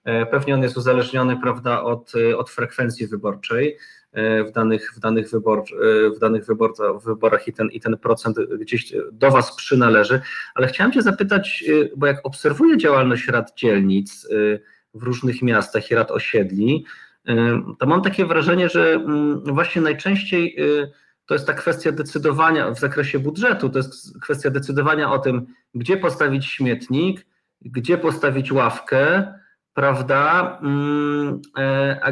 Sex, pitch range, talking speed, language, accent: male, 120-150 Hz, 135 wpm, Polish, native